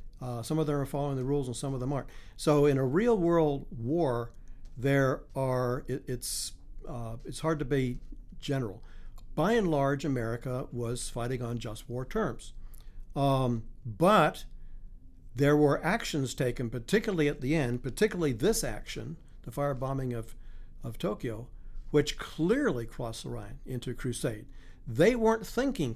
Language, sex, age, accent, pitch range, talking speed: English, male, 60-79, American, 115-155 Hz, 155 wpm